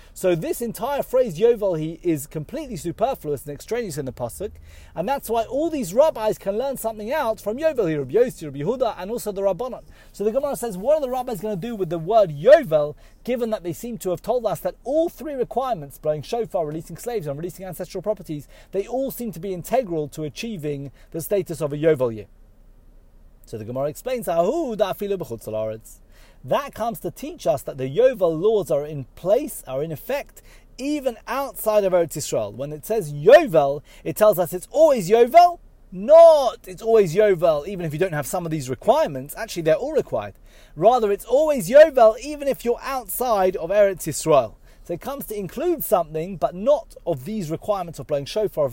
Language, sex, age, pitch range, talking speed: English, male, 30-49, 155-235 Hz, 200 wpm